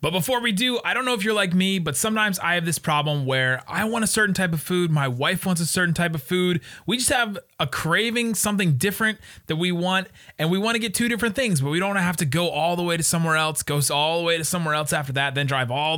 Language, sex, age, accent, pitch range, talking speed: English, male, 30-49, American, 145-195 Hz, 290 wpm